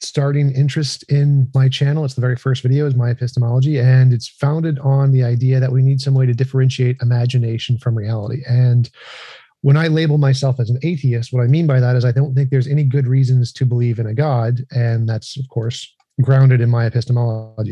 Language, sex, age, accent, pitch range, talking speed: English, male, 40-59, American, 120-140 Hz, 215 wpm